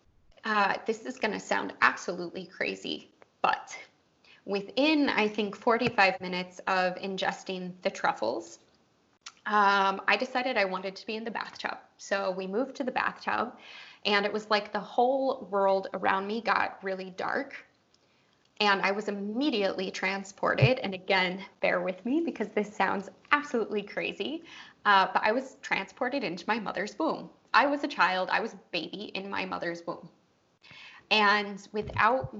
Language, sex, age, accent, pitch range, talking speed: English, female, 20-39, American, 190-220 Hz, 155 wpm